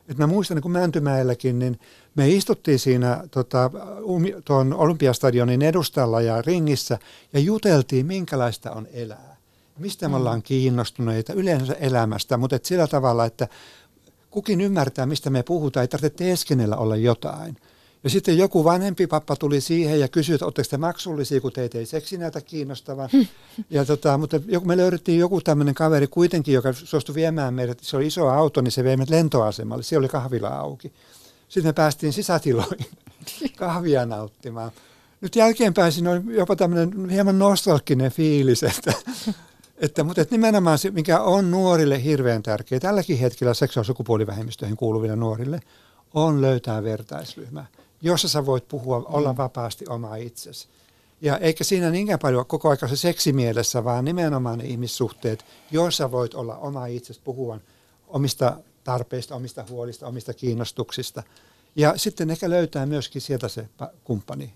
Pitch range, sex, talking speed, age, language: 120-165 Hz, male, 150 wpm, 60-79, Finnish